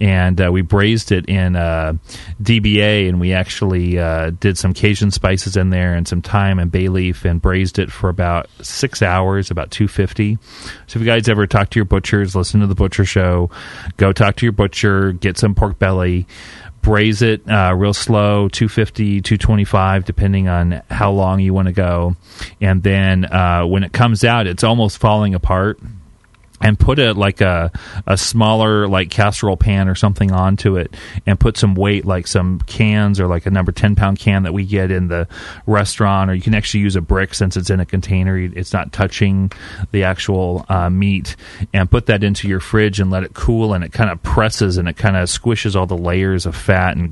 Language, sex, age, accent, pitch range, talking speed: English, male, 30-49, American, 90-105 Hz, 205 wpm